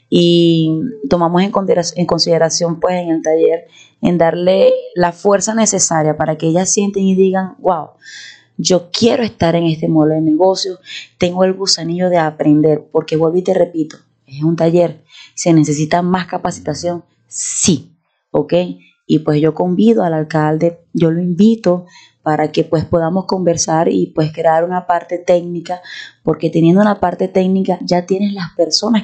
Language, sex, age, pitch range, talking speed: Spanish, female, 20-39, 155-180 Hz, 155 wpm